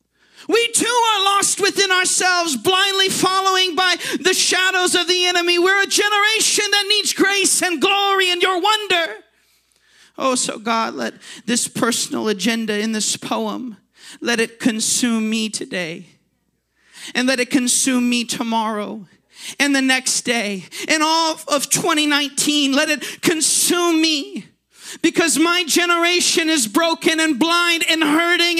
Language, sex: English, male